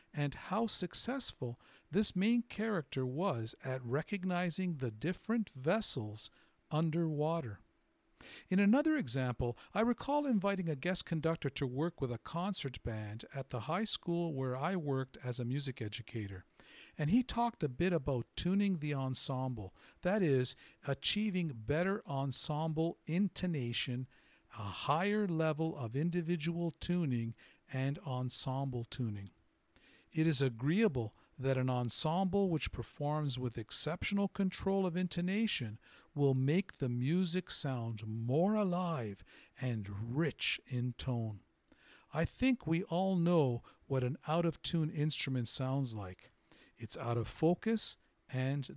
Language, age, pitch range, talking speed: English, 50-69, 125-180 Hz, 125 wpm